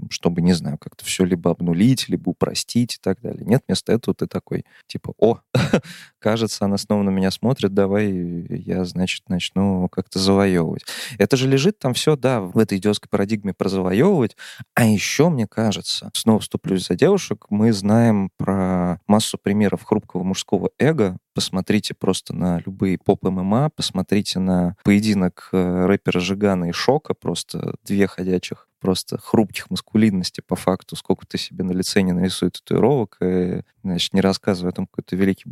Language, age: Russian, 20-39